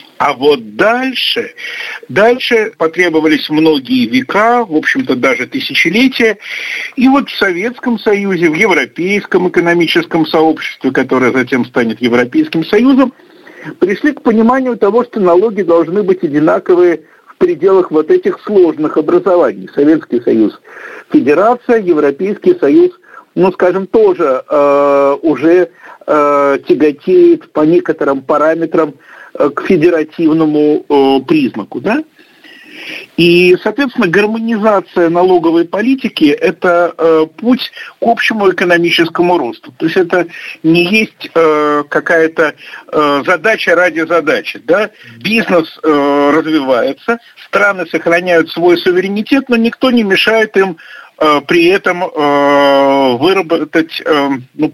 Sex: male